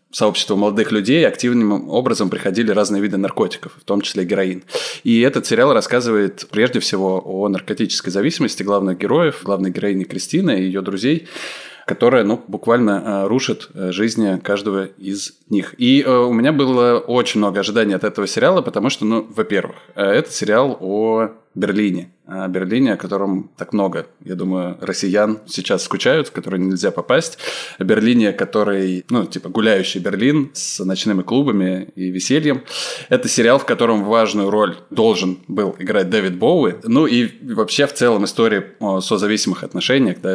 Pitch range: 95-110 Hz